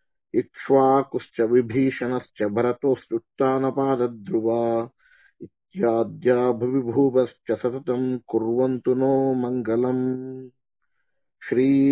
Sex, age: male, 50-69